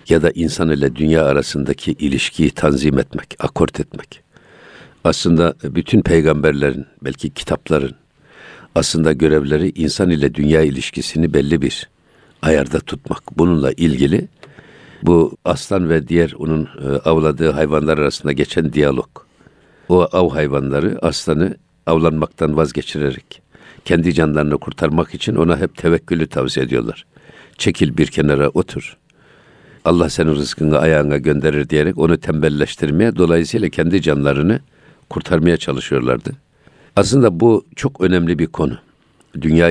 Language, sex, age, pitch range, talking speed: Turkish, male, 60-79, 75-85 Hz, 115 wpm